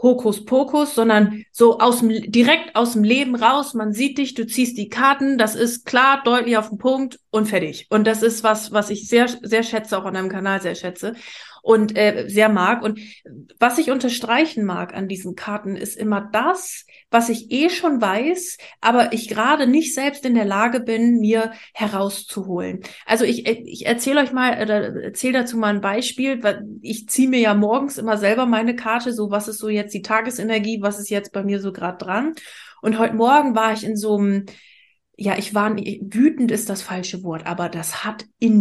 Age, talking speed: 30-49, 195 wpm